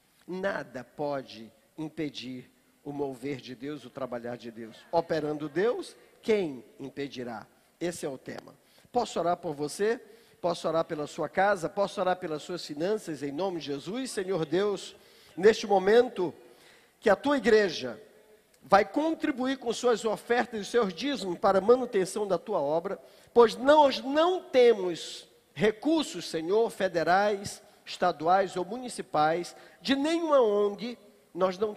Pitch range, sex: 160-235 Hz, male